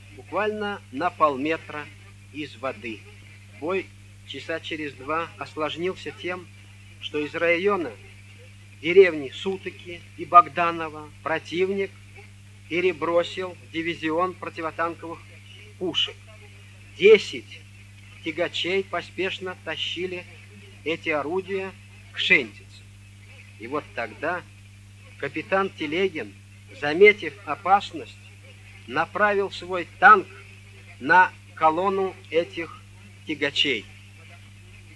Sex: male